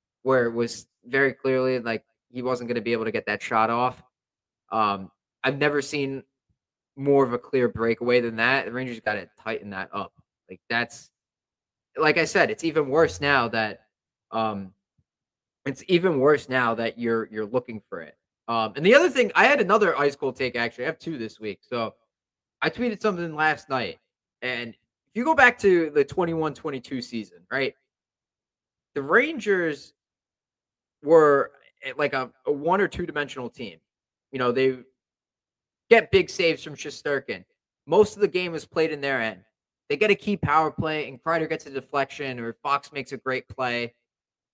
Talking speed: 180 wpm